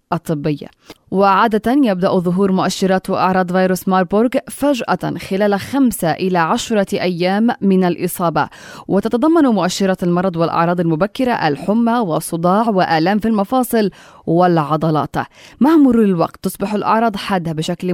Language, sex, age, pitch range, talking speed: Arabic, female, 20-39, 170-215 Hz, 115 wpm